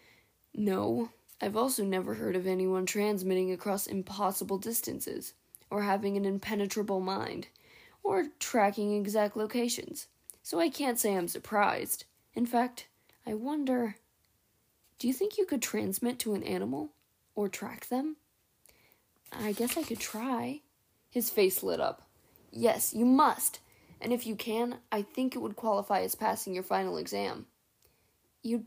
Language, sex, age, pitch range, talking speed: English, female, 10-29, 195-250 Hz, 145 wpm